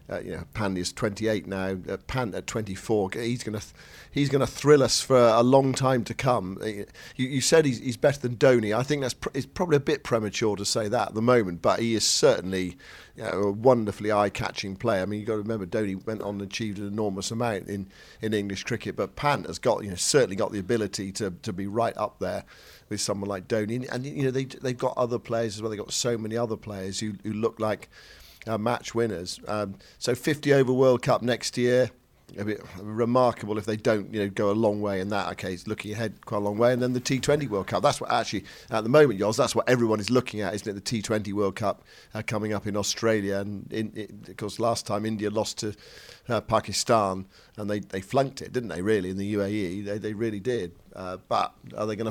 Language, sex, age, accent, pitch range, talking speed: English, male, 50-69, British, 100-120 Hz, 250 wpm